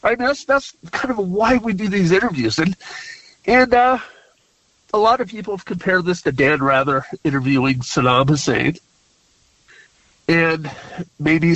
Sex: male